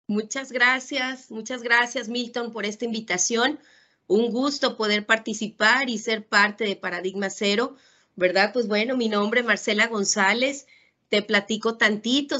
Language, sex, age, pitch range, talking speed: Spanish, female, 30-49, 205-240 Hz, 140 wpm